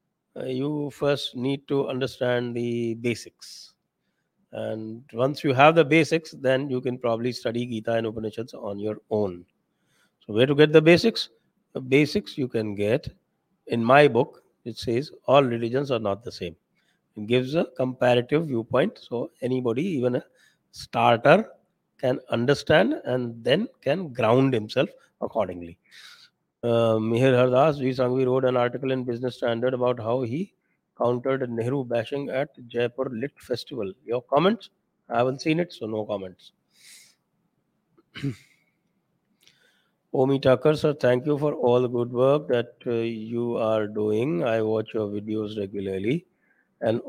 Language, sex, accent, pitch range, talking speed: English, male, Indian, 115-140 Hz, 150 wpm